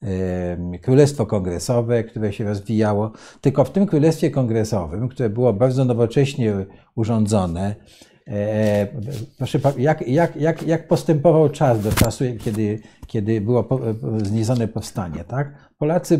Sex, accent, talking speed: male, native, 120 wpm